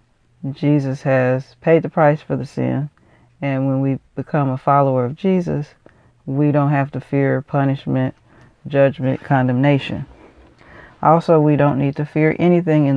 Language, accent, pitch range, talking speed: English, American, 135-155 Hz, 150 wpm